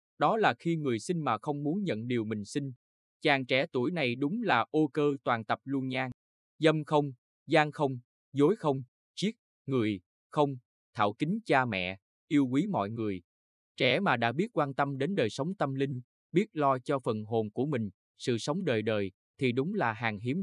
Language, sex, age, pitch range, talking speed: Vietnamese, male, 20-39, 110-150 Hz, 200 wpm